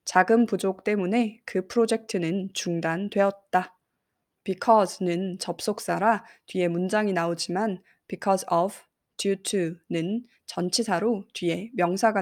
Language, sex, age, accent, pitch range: Korean, female, 20-39, native, 175-210 Hz